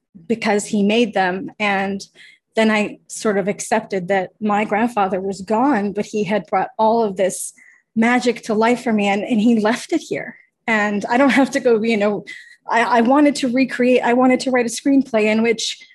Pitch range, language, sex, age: 200-235 Hz, English, female, 30-49